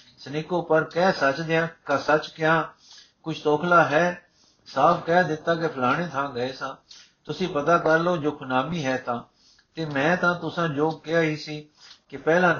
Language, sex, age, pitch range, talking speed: Punjabi, male, 60-79, 140-170 Hz, 175 wpm